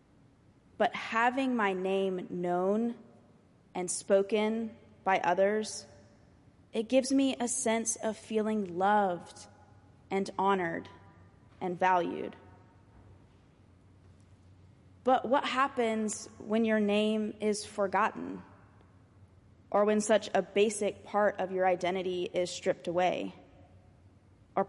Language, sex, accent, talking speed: English, female, American, 100 wpm